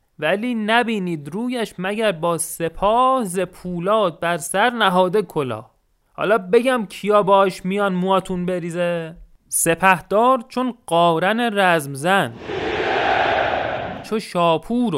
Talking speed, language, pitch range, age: 100 wpm, Persian, 150-225 Hz, 30-49